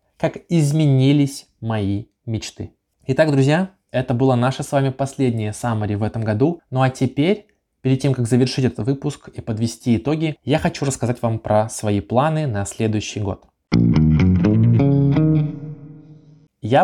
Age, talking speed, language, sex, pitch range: 20-39, 140 wpm, Russian, male, 115-150 Hz